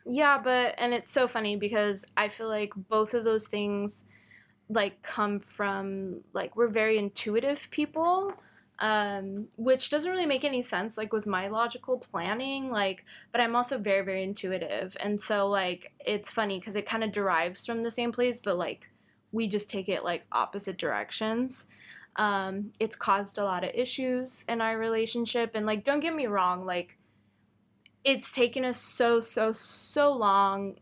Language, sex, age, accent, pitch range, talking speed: English, female, 10-29, American, 195-235 Hz, 170 wpm